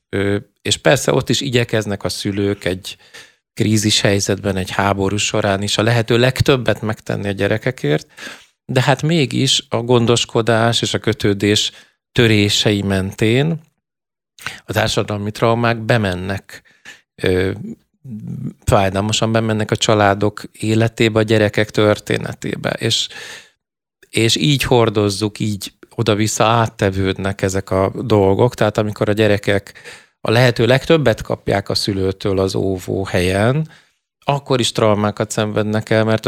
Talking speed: 115 wpm